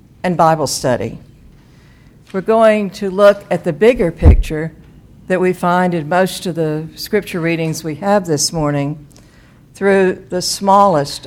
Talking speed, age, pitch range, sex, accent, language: 145 wpm, 60-79, 150-180 Hz, female, American, English